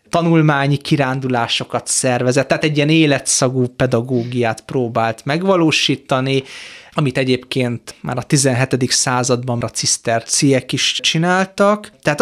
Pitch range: 125-155 Hz